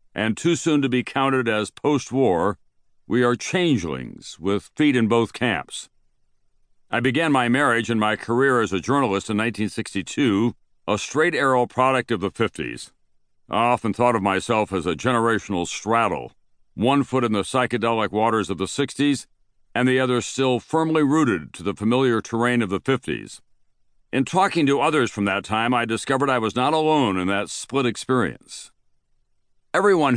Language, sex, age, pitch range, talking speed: English, male, 60-79, 105-130 Hz, 170 wpm